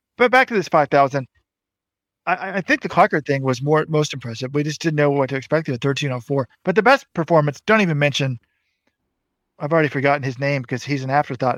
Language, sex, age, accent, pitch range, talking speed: English, male, 40-59, American, 130-165 Hz, 210 wpm